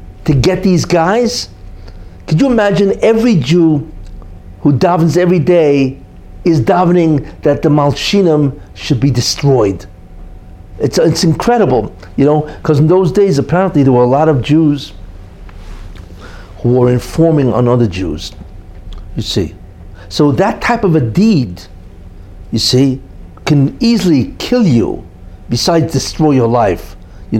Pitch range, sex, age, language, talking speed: 95-155 Hz, male, 60-79, English, 135 wpm